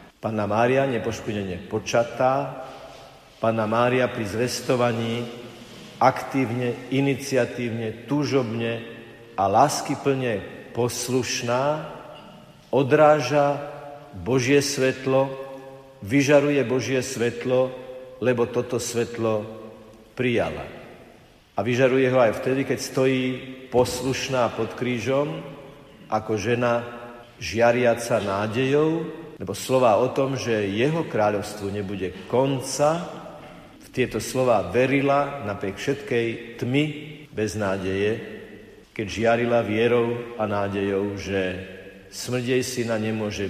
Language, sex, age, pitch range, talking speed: Slovak, male, 50-69, 110-135 Hz, 90 wpm